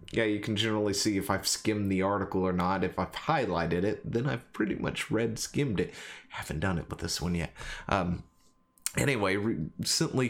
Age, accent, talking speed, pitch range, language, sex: 30-49, American, 185 wpm, 95-130 Hz, English, male